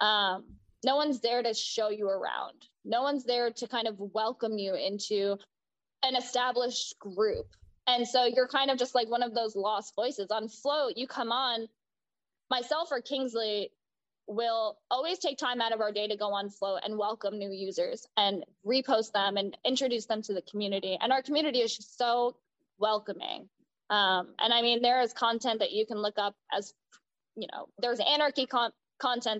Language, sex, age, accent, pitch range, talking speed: English, female, 20-39, American, 210-250 Hz, 185 wpm